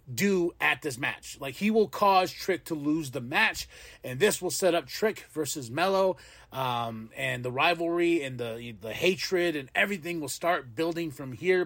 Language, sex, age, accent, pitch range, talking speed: English, male, 30-49, American, 140-185 Hz, 185 wpm